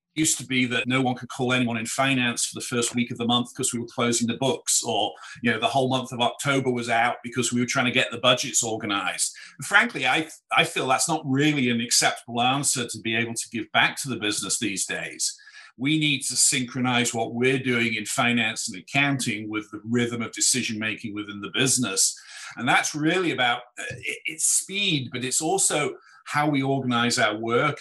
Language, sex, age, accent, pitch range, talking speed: English, male, 50-69, British, 115-135 Hz, 210 wpm